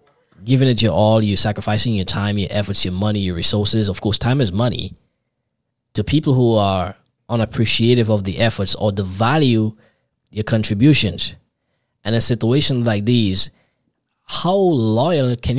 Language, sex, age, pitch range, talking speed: English, male, 20-39, 105-130 Hz, 155 wpm